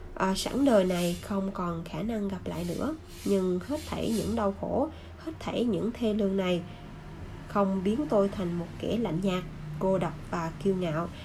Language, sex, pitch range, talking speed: Vietnamese, female, 180-225 Hz, 190 wpm